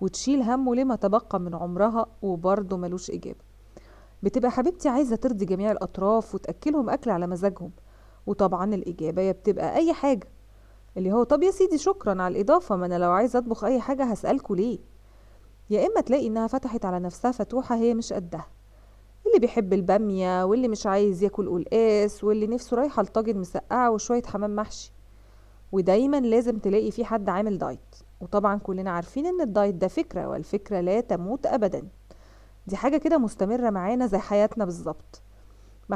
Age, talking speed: 20-39, 160 wpm